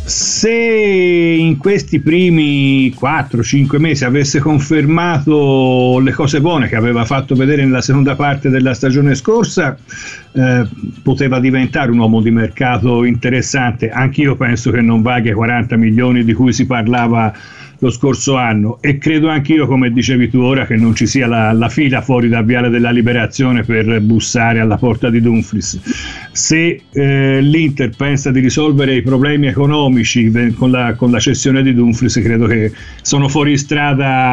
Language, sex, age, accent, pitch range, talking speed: Italian, male, 50-69, native, 120-155 Hz, 160 wpm